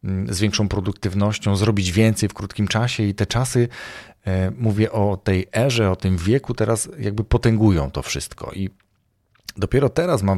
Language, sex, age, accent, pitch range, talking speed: Polish, male, 40-59, native, 90-115 Hz, 155 wpm